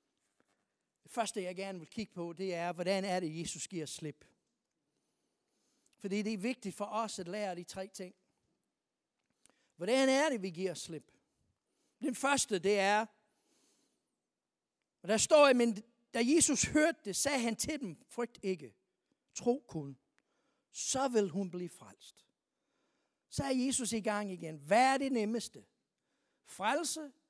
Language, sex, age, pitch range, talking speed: Danish, male, 60-79, 190-275 Hz, 150 wpm